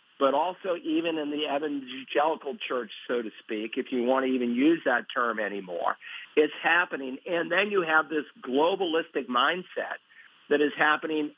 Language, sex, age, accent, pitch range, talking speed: English, male, 50-69, American, 130-160 Hz, 165 wpm